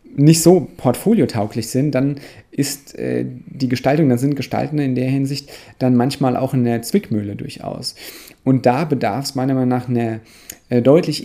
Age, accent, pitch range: 40-59, German, 115-145 Hz